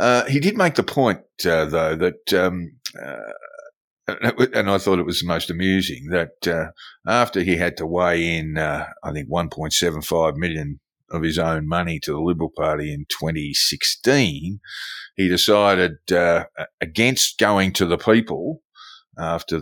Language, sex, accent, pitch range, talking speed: English, male, Australian, 80-100 Hz, 160 wpm